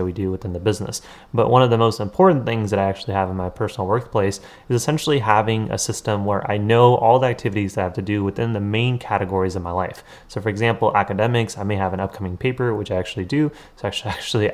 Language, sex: English, male